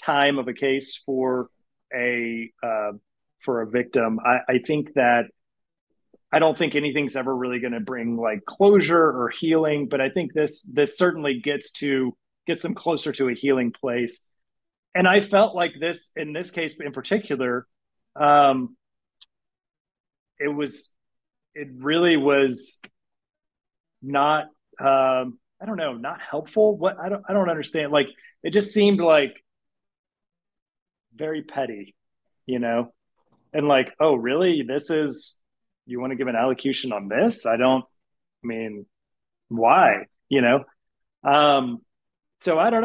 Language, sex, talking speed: English, male, 145 wpm